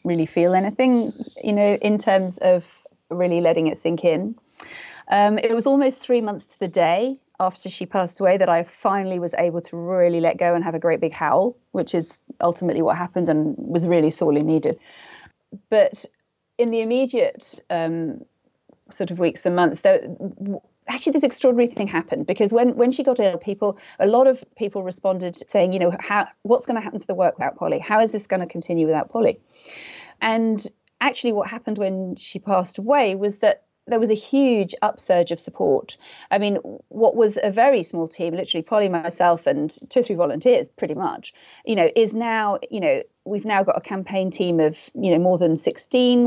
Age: 30-49